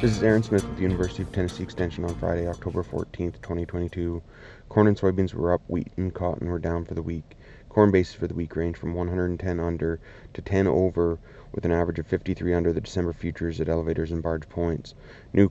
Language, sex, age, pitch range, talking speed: English, male, 30-49, 85-95 Hz, 215 wpm